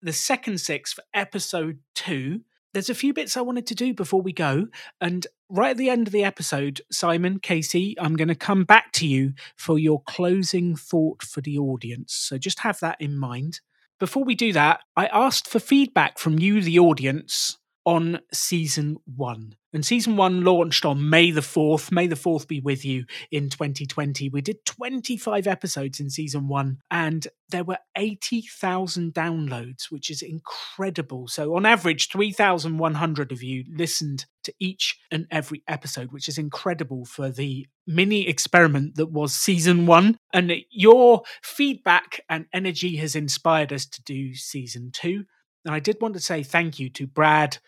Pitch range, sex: 140-180 Hz, male